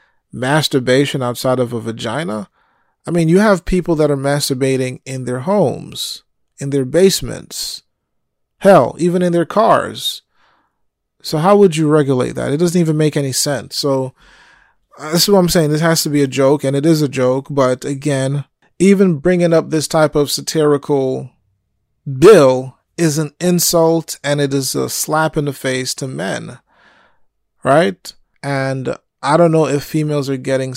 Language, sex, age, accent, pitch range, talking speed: English, male, 30-49, American, 130-165 Hz, 165 wpm